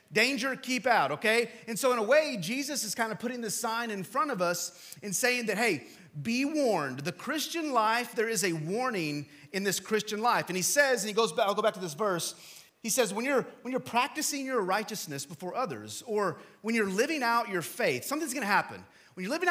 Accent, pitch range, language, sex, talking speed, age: American, 150-235 Hz, English, male, 230 wpm, 30-49